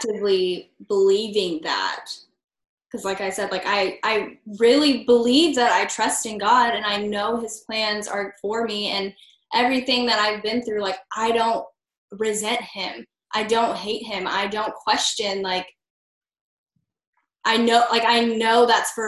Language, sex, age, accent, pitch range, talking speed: English, female, 10-29, American, 190-230 Hz, 160 wpm